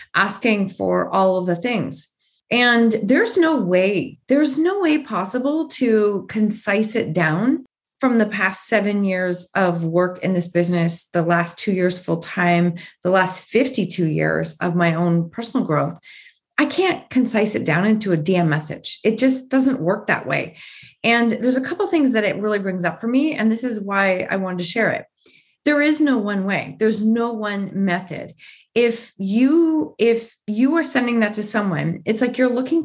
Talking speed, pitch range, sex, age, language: 185 wpm, 190-265 Hz, female, 30-49, English